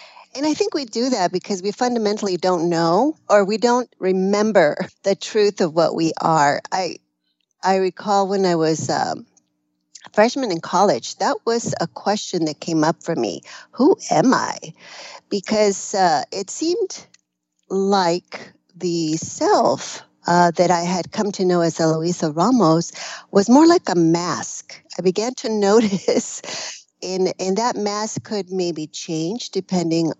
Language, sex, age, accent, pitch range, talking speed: English, female, 40-59, American, 165-215 Hz, 155 wpm